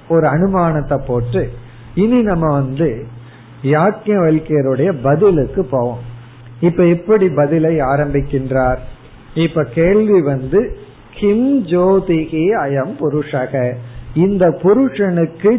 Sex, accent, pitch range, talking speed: male, native, 135-180 Hz, 70 wpm